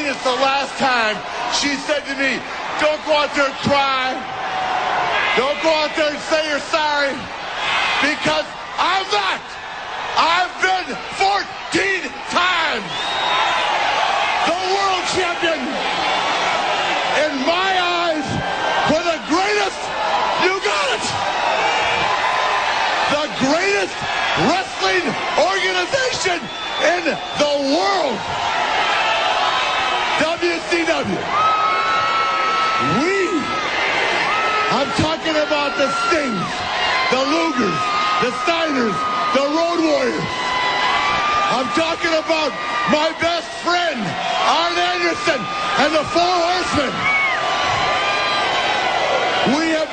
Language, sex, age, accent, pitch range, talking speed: English, male, 50-69, American, 255-340 Hz, 90 wpm